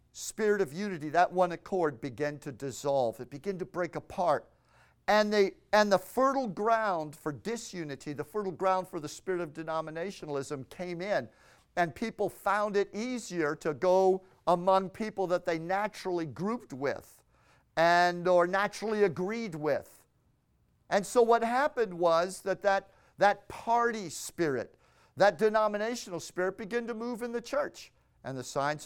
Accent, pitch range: American, 145-205 Hz